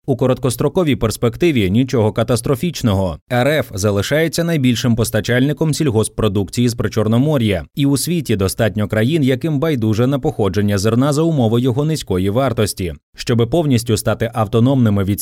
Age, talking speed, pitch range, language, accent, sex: 20-39, 125 wpm, 105-135 Hz, Ukrainian, native, male